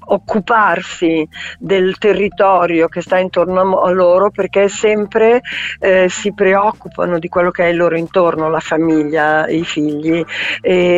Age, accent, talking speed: 50-69, native, 135 wpm